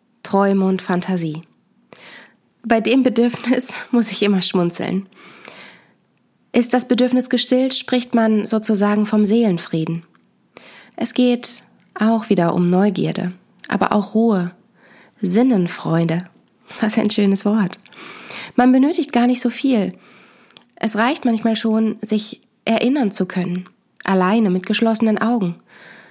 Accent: German